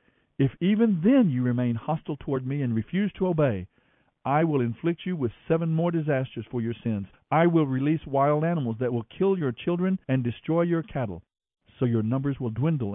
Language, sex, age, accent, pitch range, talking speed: English, male, 50-69, American, 115-155 Hz, 195 wpm